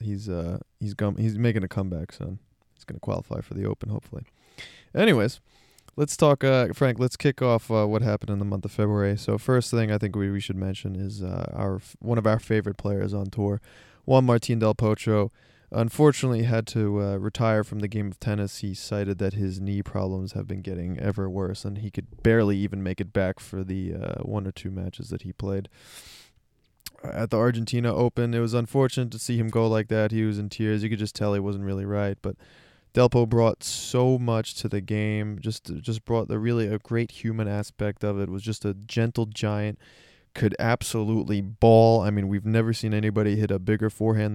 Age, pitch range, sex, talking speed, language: 20-39, 100-115 Hz, male, 215 wpm, English